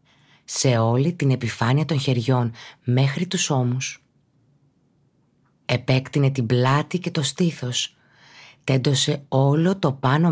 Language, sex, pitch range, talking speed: Greek, female, 125-145 Hz, 110 wpm